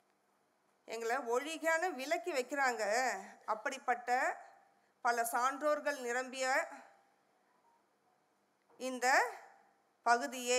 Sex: female